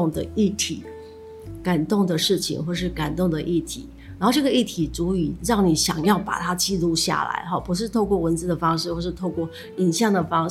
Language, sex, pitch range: Chinese, female, 165-195 Hz